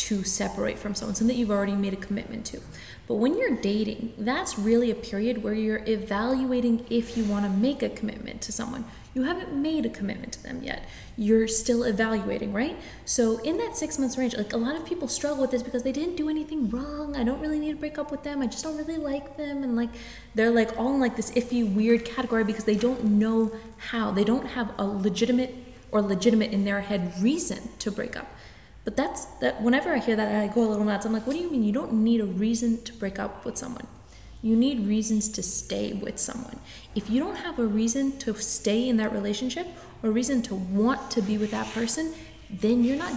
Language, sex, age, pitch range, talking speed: English, female, 20-39, 215-260 Hz, 230 wpm